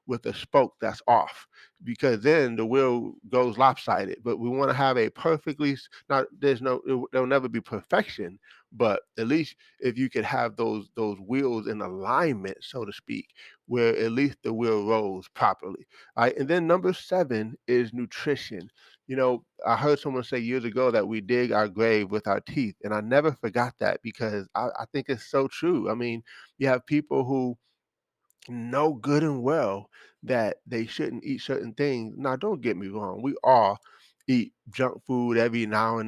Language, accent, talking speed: English, American, 185 wpm